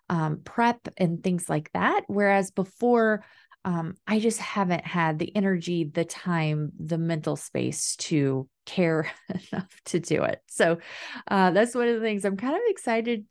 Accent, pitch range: American, 170-225 Hz